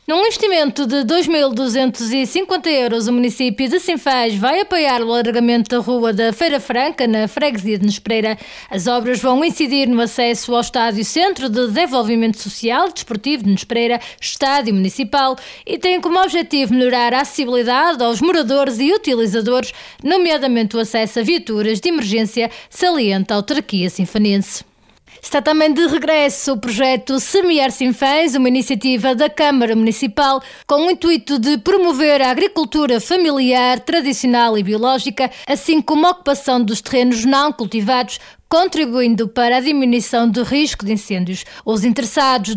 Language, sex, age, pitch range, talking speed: Portuguese, female, 20-39, 225-290 Hz, 145 wpm